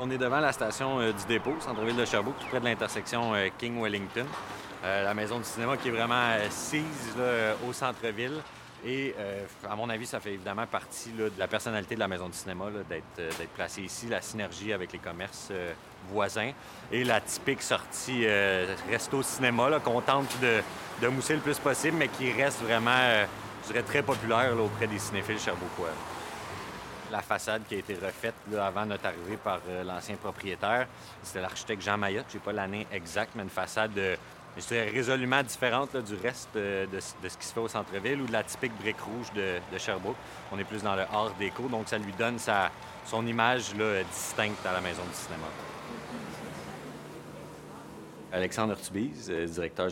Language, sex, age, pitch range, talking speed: French, male, 40-59, 100-120 Hz, 200 wpm